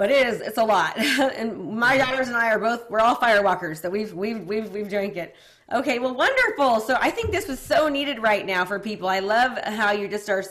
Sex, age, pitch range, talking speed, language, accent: female, 30-49, 190-220 Hz, 245 wpm, English, American